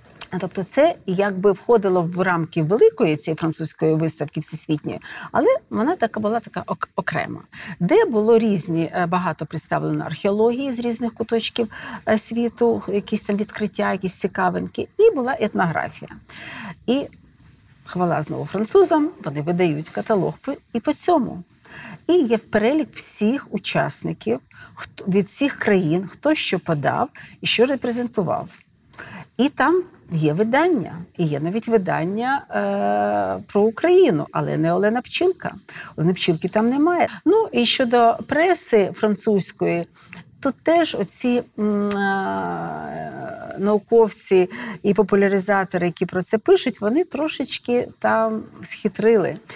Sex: female